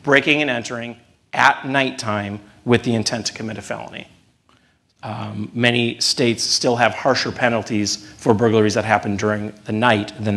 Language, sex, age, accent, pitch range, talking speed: English, male, 40-59, American, 110-130 Hz, 155 wpm